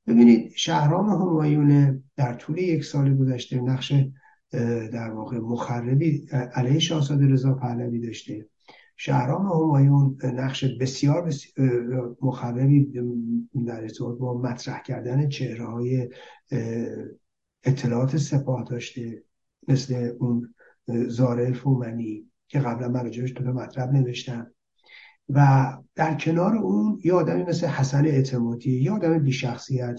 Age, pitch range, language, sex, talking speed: 60-79, 120-145 Hz, Persian, male, 110 wpm